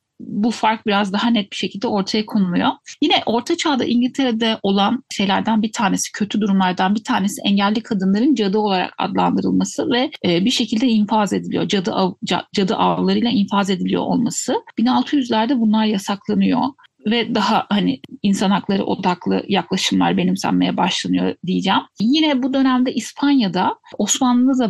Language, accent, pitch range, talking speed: Turkish, native, 195-245 Hz, 135 wpm